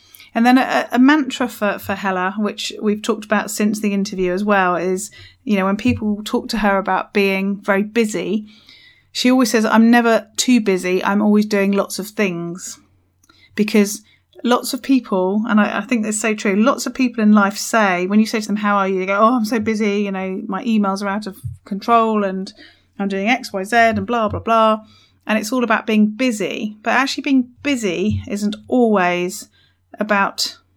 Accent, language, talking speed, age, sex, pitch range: British, English, 205 wpm, 30-49, female, 190-220 Hz